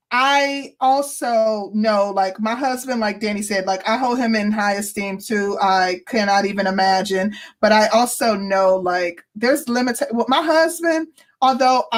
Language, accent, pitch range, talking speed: English, American, 205-270 Hz, 165 wpm